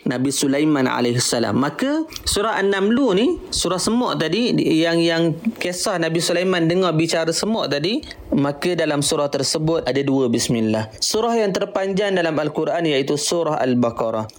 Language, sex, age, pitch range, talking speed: Malay, male, 30-49, 135-170 Hz, 140 wpm